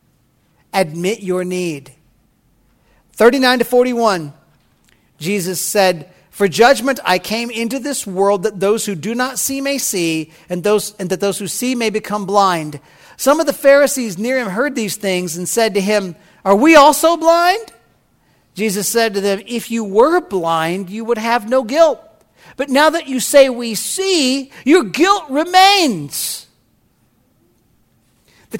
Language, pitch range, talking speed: English, 200-285 Hz, 155 wpm